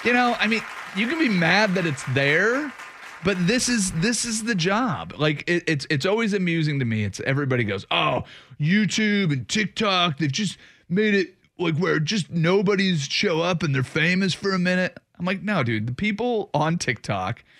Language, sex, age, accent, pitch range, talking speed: English, male, 30-49, American, 135-195 Hz, 195 wpm